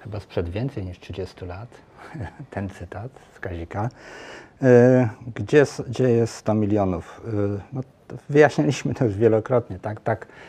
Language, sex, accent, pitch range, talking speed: Polish, male, native, 100-120 Hz, 125 wpm